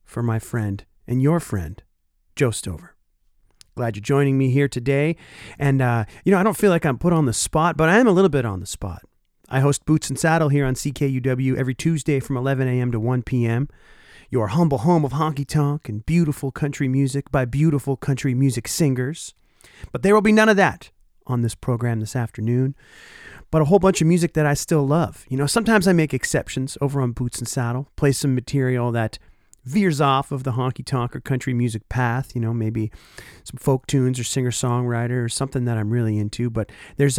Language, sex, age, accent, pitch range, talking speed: English, male, 40-59, American, 115-145 Hz, 210 wpm